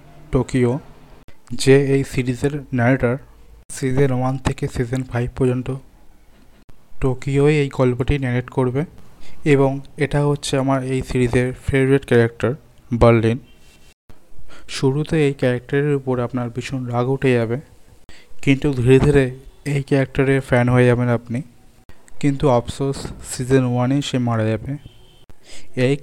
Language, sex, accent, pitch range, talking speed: Bengali, male, native, 120-140 Hz, 85 wpm